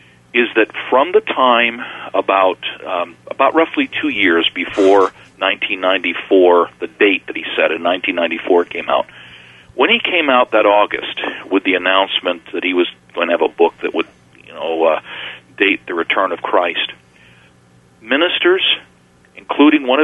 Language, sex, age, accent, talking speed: English, male, 50-69, American, 155 wpm